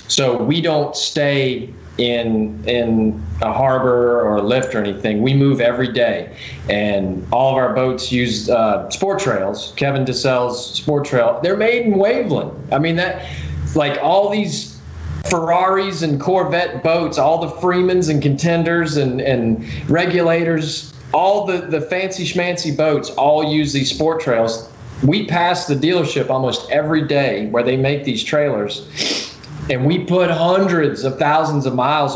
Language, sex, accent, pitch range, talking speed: English, male, American, 115-155 Hz, 155 wpm